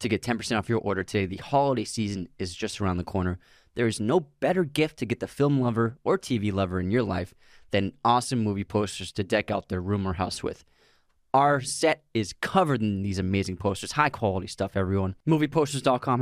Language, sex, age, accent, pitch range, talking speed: English, male, 20-39, American, 100-135 Hz, 205 wpm